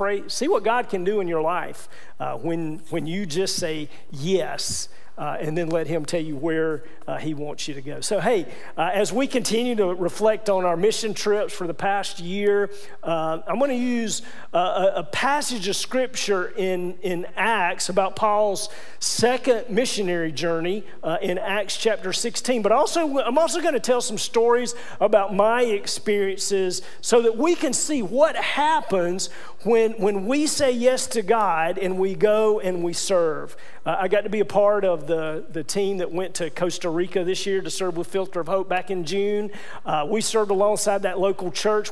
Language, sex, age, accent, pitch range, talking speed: English, male, 40-59, American, 175-225 Hz, 195 wpm